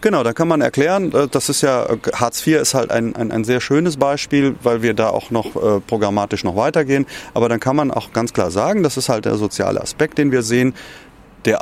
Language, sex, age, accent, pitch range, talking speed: German, male, 30-49, German, 105-145 Hz, 225 wpm